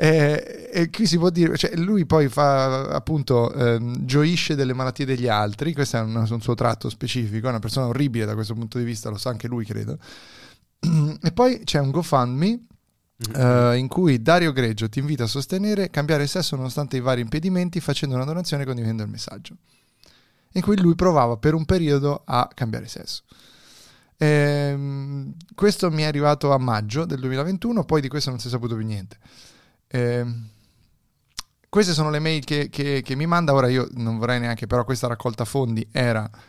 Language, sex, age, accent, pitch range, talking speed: Italian, male, 20-39, native, 115-150 Hz, 180 wpm